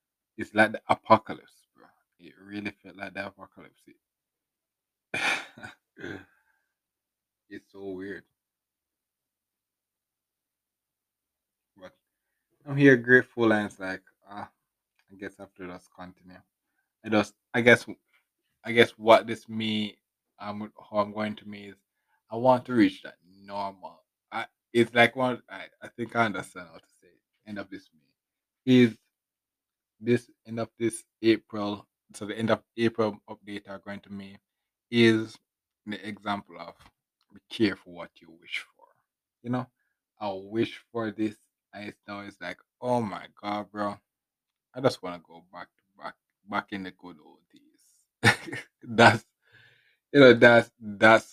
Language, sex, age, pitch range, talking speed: English, male, 20-39, 100-115 Hz, 145 wpm